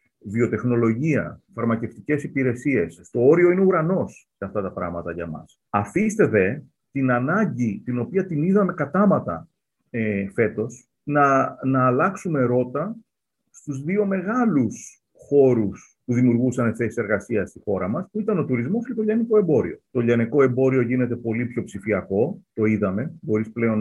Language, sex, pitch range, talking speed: Greek, male, 110-150 Hz, 145 wpm